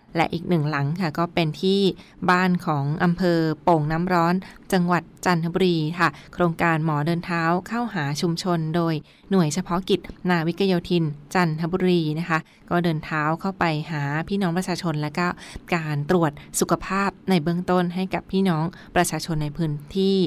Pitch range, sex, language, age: 165-185 Hz, female, Thai, 20-39